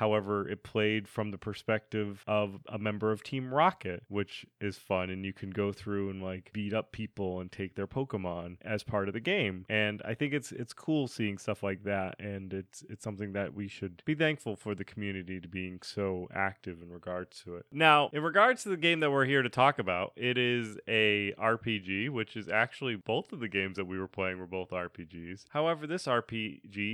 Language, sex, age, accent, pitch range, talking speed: English, male, 30-49, American, 95-130 Hz, 215 wpm